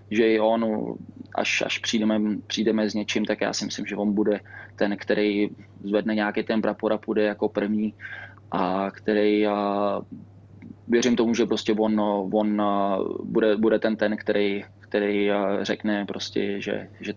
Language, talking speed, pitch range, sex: Czech, 150 wpm, 105-110 Hz, male